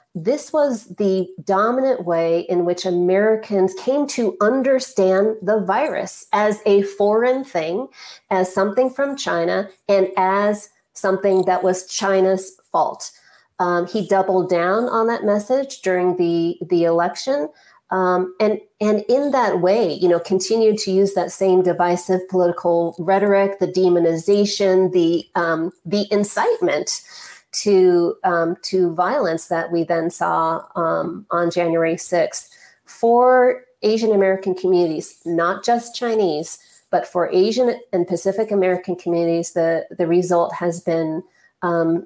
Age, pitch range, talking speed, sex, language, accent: 40-59, 170-205 Hz, 135 wpm, female, English, American